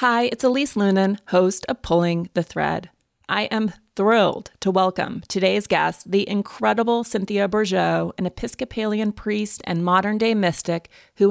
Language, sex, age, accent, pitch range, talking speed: English, female, 30-49, American, 170-210 Hz, 145 wpm